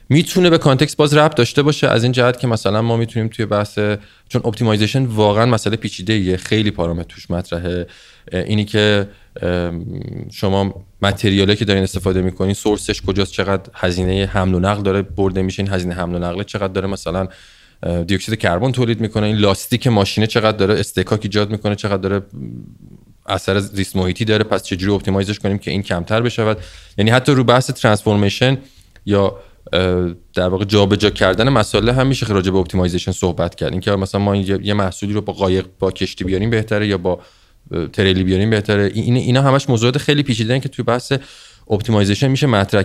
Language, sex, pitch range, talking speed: Persian, male, 95-120 Hz, 175 wpm